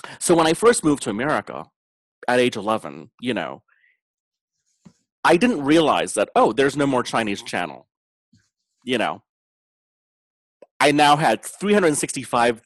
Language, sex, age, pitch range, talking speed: English, male, 30-49, 110-155 Hz, 135 wpm